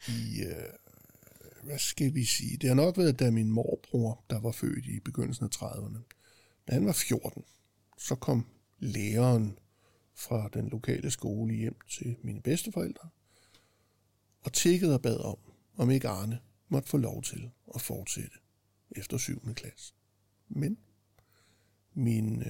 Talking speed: 145 wpm